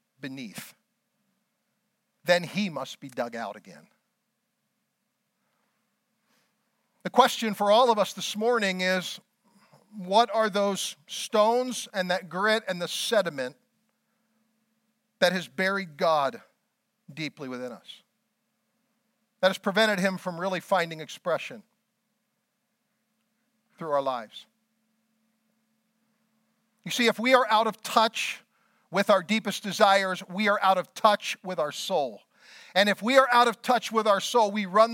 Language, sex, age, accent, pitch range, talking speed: English, male, 50-69, American, 190-230 Hz, 130 wpm